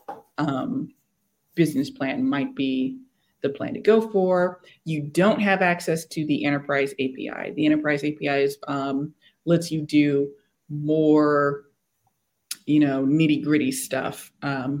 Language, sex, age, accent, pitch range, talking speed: English, female, 20-39, American, 140-175 Hz, 130 wpm